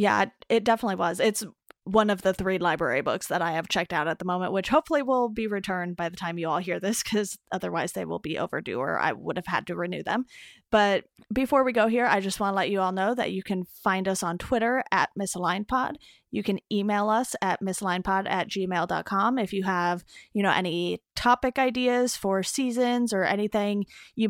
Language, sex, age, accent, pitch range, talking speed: English, female, 20-39, American, 185-225 Hz, 220 wpm